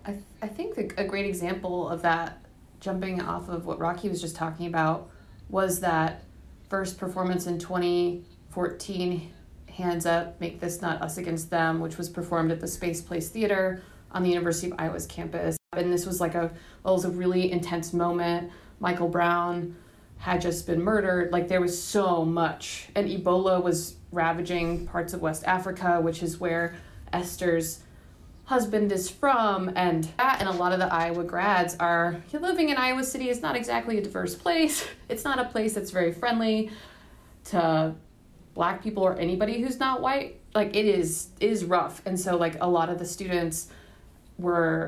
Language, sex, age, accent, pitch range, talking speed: English, female, 30-49, American, 170-185 Hz, 180 wpm